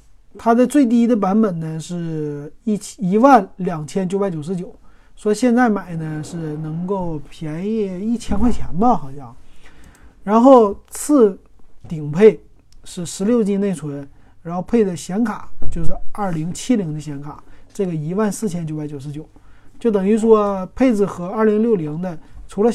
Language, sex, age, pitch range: Chinese, male, 30-49, 150-215 Hz